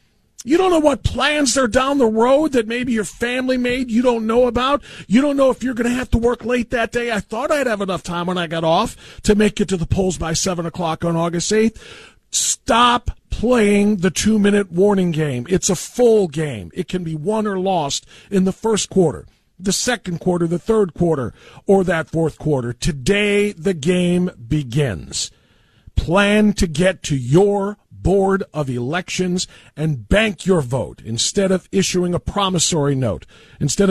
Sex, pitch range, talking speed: male, 150-205 Hz, 190 wpm